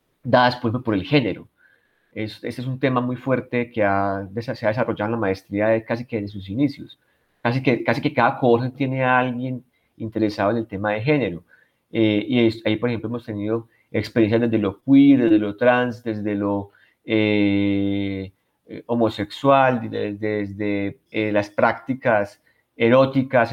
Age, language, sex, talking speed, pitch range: 30-49, Spanish, male, 170 wpm, 105-120 Hz